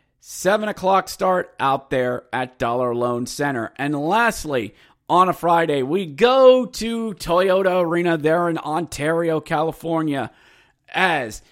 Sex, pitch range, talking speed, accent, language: male, 115-160 Hz, 125 wpm, American, English